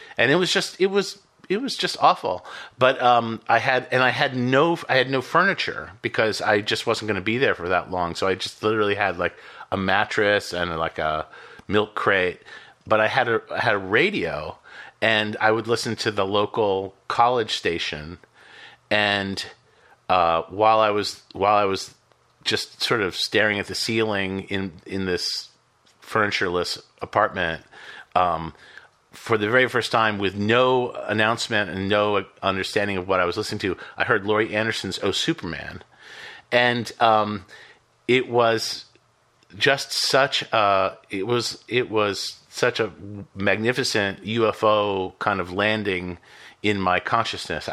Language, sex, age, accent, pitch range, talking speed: English, male, 40-59, American, 100-120 Hz, 160 wpm